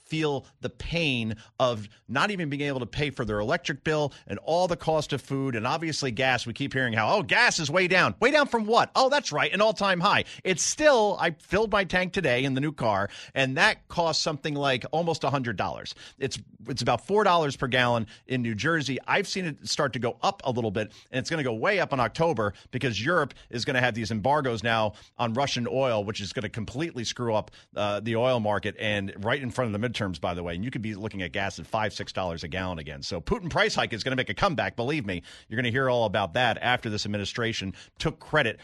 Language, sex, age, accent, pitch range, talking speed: English, male, 40-59, American, 110-145 Hz, 245 wpm